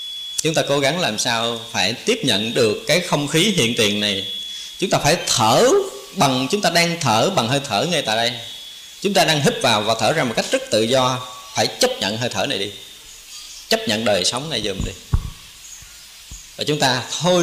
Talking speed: 215 wpm